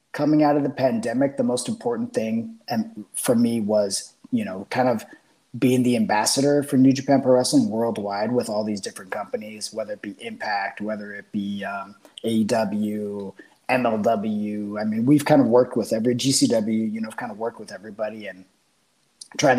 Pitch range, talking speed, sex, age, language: 105-140 Hz, 180 wpm, male, 30-49, English